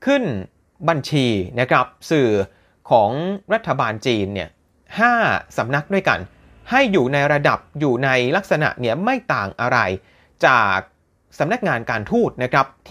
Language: Thai